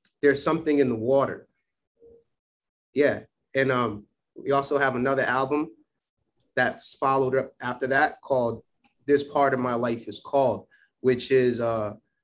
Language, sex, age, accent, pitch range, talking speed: English, male, 30-49, American, 120-140 Hz, 140 wpm